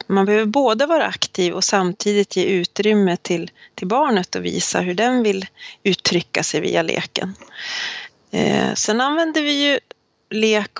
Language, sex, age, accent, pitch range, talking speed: Swedish, female, 30-49, native, 185-225 Hz, 150 wpm